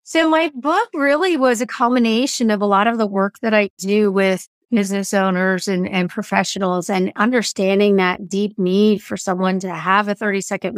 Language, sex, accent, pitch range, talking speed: English, female, American, 195-235 Hz, 185 wpm